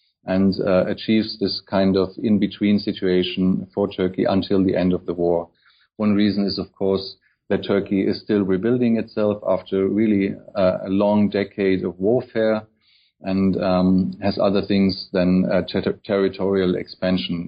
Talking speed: 150 wpm